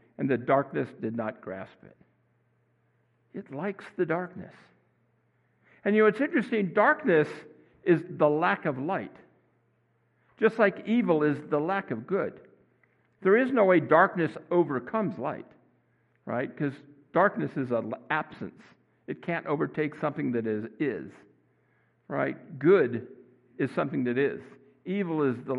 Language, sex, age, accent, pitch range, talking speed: English, male, 60-79, American, 145-200 Hz, 135 wpm